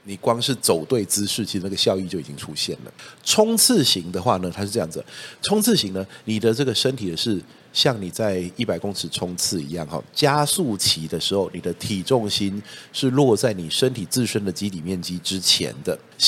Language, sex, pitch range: Chinese, male, 95-135 Hz